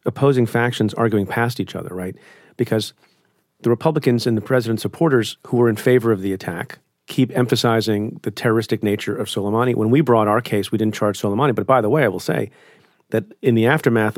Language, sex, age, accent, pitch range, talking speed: English, male, 40-59, American, 105-125 Hz, 205 wpm